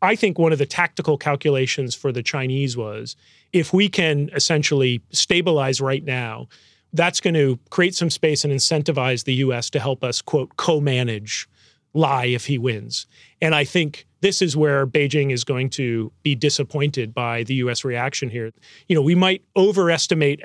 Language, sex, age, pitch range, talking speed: English, male, 40-59, 130-160 Hz, 175 wpm